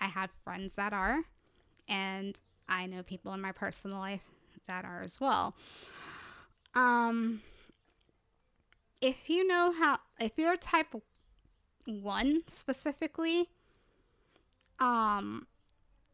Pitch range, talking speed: 190-235 Hz, 110 wpm